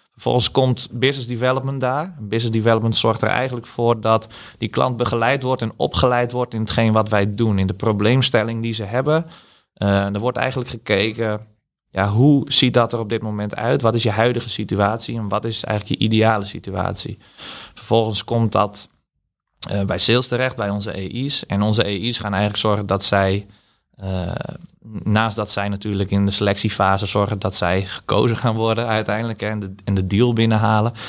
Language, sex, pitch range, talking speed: Dutch, male, 105-120 Hz, 185 wpm